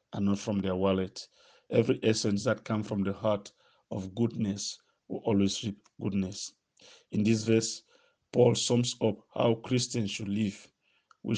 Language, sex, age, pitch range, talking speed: English, male, 50-69, 100-120 Hz, 155 wpm